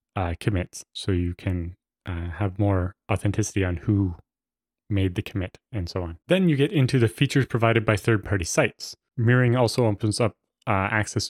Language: English